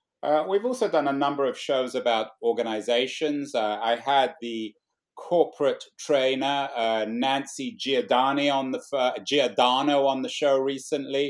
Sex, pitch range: male, 120-150 Hz